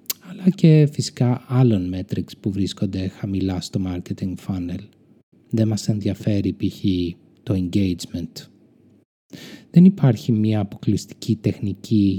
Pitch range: 100-135 Hz